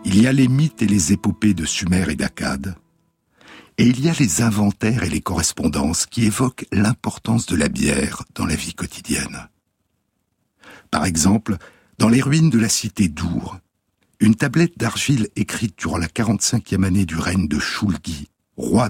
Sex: male